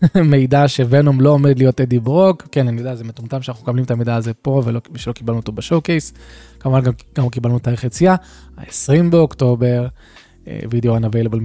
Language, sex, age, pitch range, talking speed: Hebrew, male, 20-39, 115-145 Hz, 170 wpm